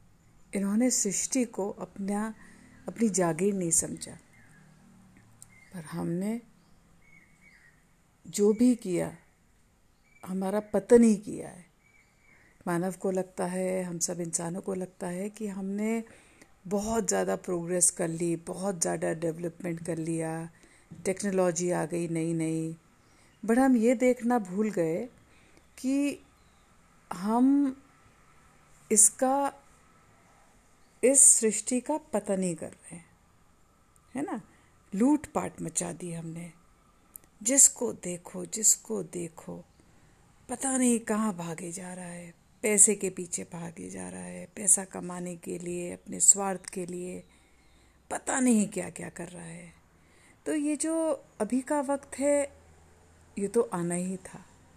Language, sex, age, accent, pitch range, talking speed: Hindi, female, 50-69, native, 170-230 Hz, 125 wpm